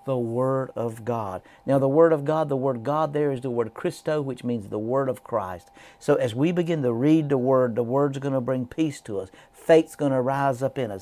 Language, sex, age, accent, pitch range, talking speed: English, male, 50-69, American, 120-140 Hz, 255 wpm